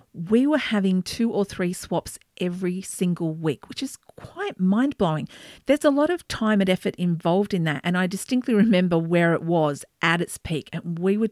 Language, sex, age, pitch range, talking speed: English, female, 40-59, 180-225 Hz, 195 wpm